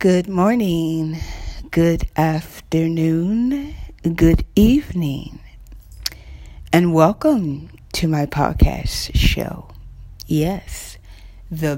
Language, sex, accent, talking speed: English, female, American, 70 wpm